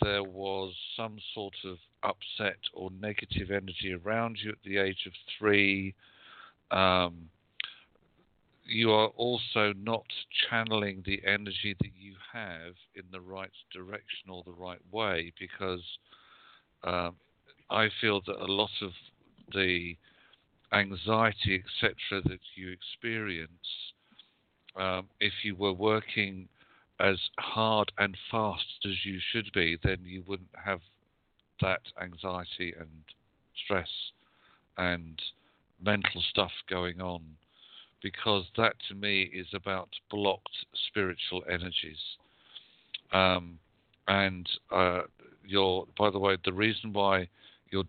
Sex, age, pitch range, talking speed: male, 50-69, 90-105 Hz, 120 wpm